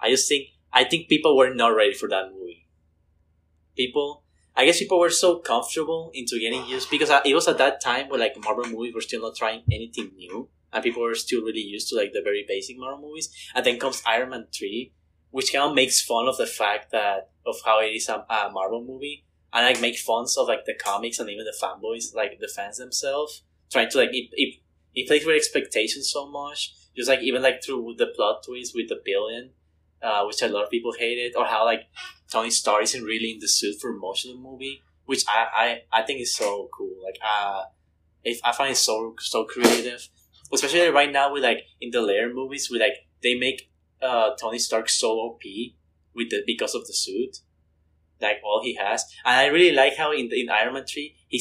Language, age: English, 10-29